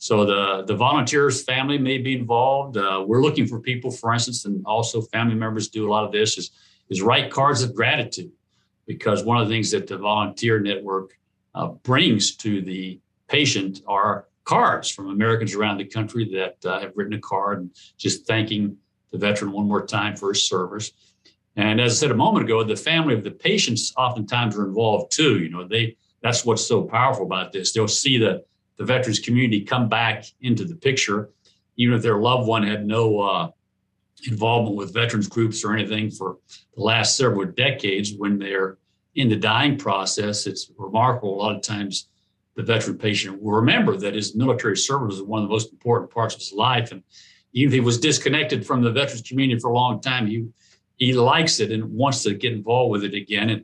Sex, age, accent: male, 60-79, American